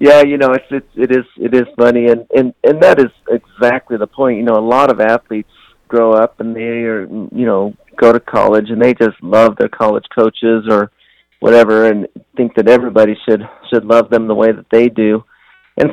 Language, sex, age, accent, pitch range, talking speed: English, male, 50-69, American, 105-120 Hz, 215 wpm